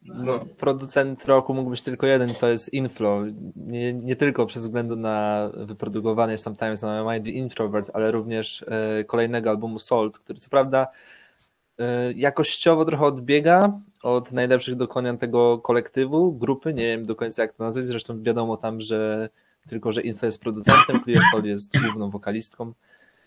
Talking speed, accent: 155 wpm, native